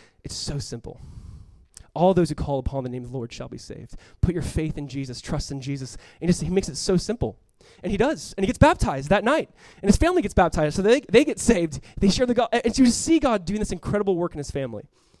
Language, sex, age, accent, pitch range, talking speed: English, male, 20-39, American, 145-195 Hz, 260 wpm